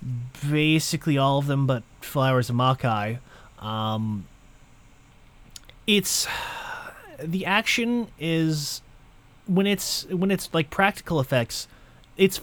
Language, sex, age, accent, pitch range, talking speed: English, male, 30-49, American, 125-165 Hz, 100 wpm